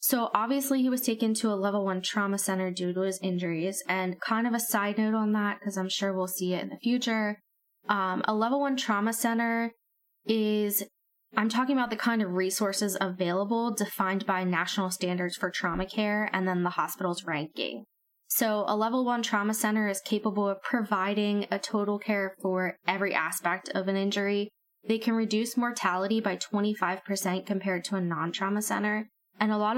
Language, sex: English, female